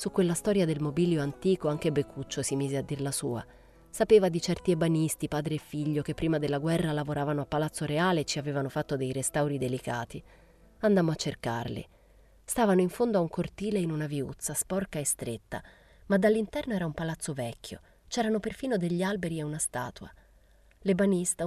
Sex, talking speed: female, 180 wpm